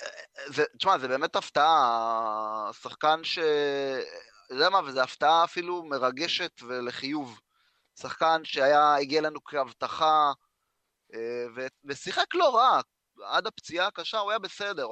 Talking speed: 110 wpm